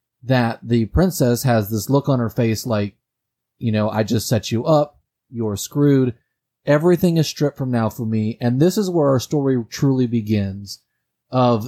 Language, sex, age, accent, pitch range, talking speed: English, male, 30-49, American, 115-145 Hz, 180 wpm